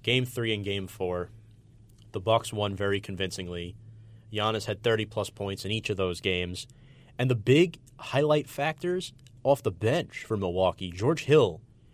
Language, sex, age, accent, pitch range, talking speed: English, male, 30-49, American, 110-135 Hz, 155 wpm